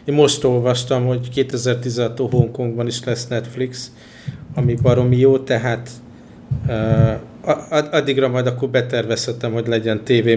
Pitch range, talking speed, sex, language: 115-130 Hz, 120 wpm, male, Hungarian